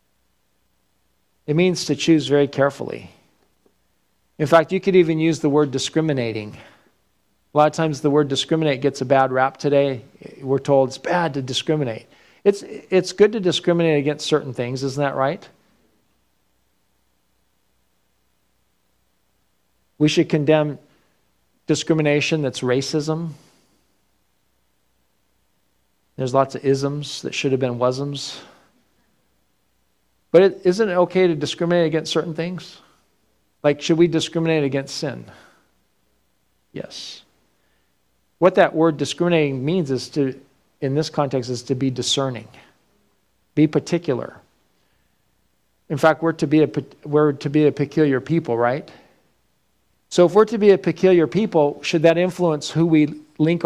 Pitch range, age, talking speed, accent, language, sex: 135-165 Hz, 40-59, 130 wpm, American, English, male